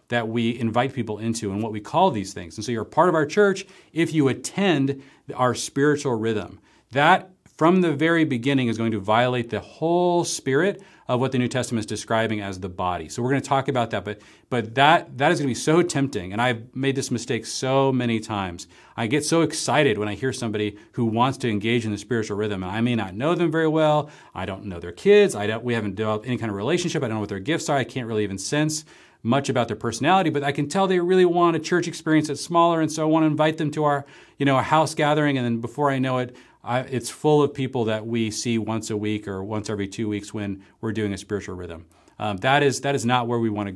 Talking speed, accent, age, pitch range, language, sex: 260 wpm, American, 40-59, 105-145 Hz, English, male